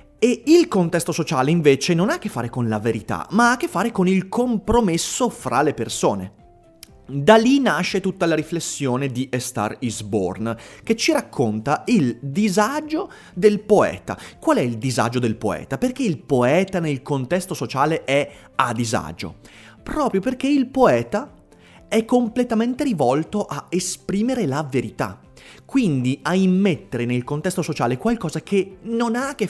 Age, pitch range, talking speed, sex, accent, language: 30-49, 130-210 Hz, 165 wpm, male, native, Italian